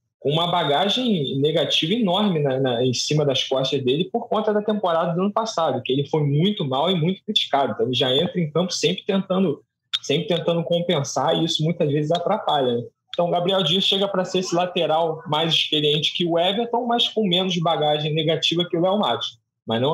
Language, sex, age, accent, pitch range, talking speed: Portuguese, male, 20-39, Brazilian, 135-180 Hz, 200 wpm